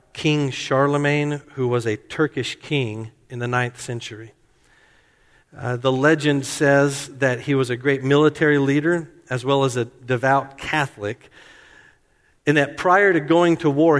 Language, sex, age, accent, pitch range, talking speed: English, male, 50-69, American, 125-155 Hz, 150 wpm